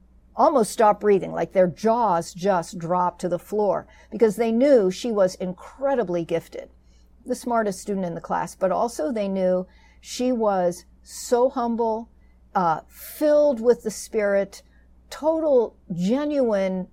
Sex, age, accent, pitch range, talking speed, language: female, 50-69, American, 180-230 Hz, 140 wpm, English